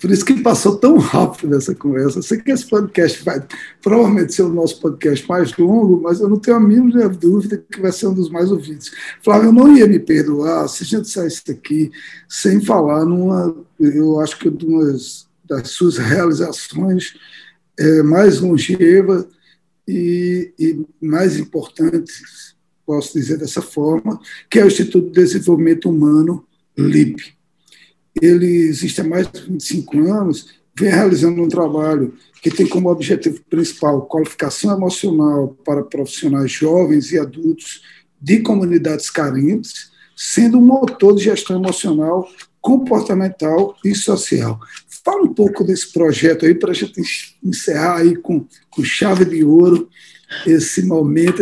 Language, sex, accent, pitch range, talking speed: Portuguese, male, Brazilian, 155-200 Hz, 145 wpm